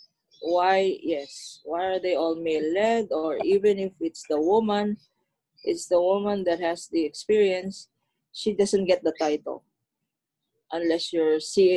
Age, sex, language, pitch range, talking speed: 20-39, female, English, 160-195 Hz, 145 wpm